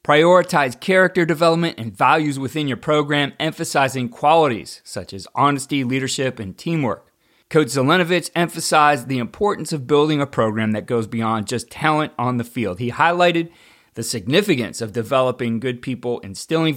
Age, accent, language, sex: 30-49, American, English, male